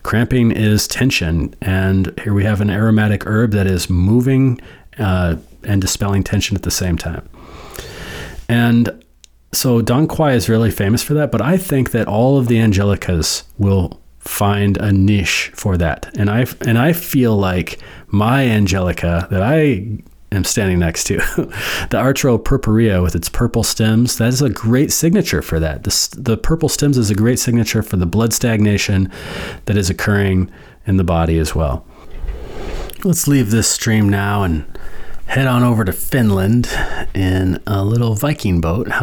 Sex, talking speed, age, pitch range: male, 165 wpm, 40-59, 90-120 Hz